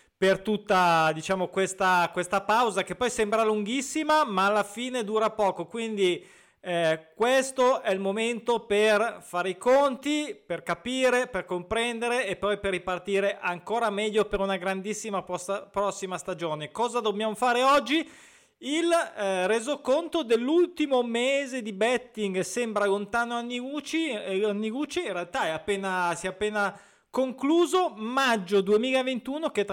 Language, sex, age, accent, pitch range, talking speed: Italian, male, 30-49, native, 185-240 Hz, 135 wpm